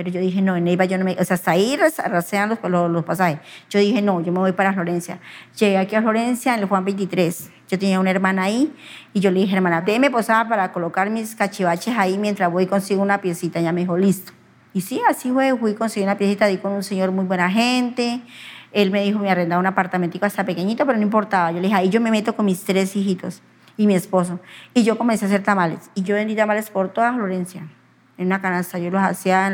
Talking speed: 250 wpm